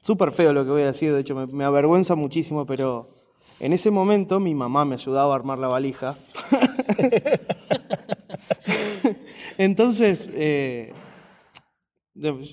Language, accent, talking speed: Spanish, Argentinian, 125 wpm